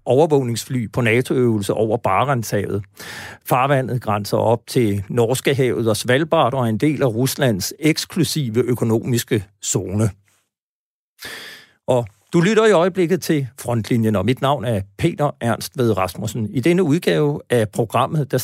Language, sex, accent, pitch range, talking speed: Danish, male, native, 110-145 Hz, 135 wpm